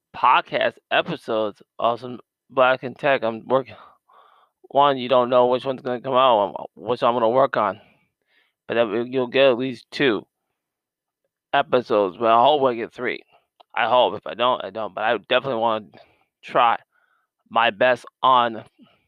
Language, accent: English, American